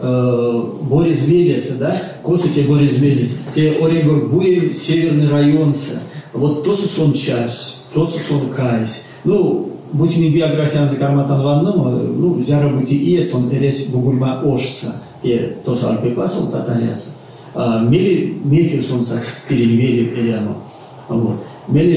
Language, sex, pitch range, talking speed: Russian, male, 120-155 Hz, 135 wpm